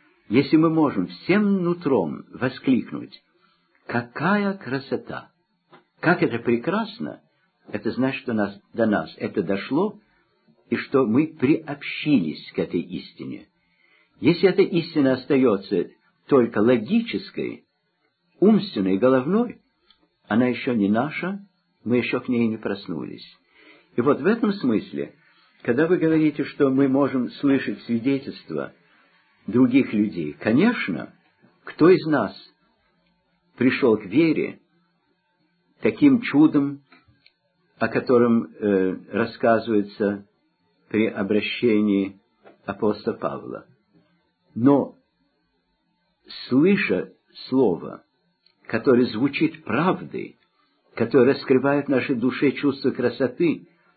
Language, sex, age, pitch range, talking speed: Russian, male, 50-69, 115-160 Hz, 100 wpm